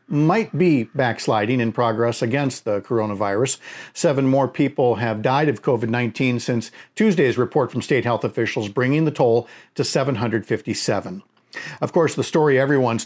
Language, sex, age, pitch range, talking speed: English, male, 50-69, 125-155 Hz, 145 wpm